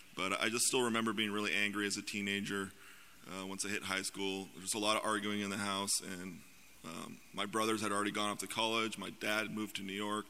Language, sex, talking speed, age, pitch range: English, male, 245 wpm, 20-39, 100-110 Hz